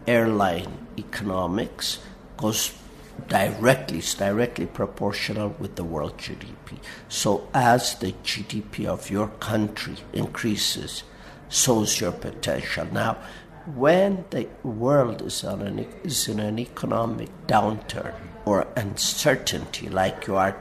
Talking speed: 110 wpm